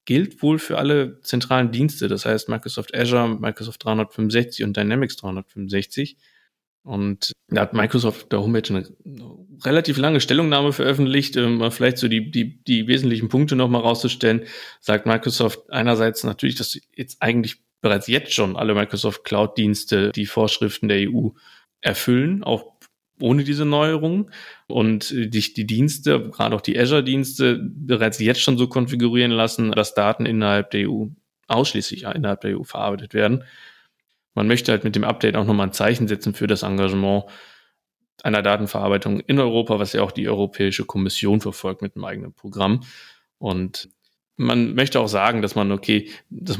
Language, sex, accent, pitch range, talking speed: German, male, German, 105-125 Hz, 155 wpm